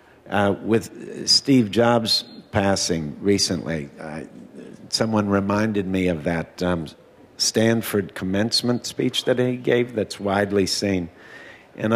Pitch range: 90-115 Hz